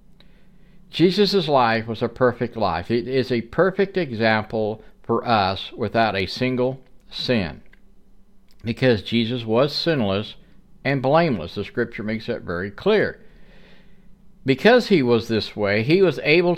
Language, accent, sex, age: English, American, male, 60-79